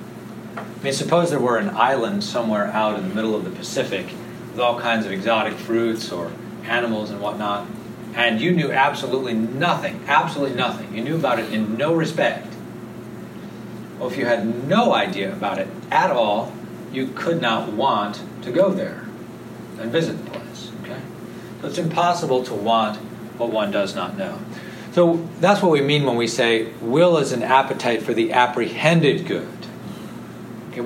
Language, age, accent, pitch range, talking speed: English, 40-59, American, 115-165 Hz, 170 wpm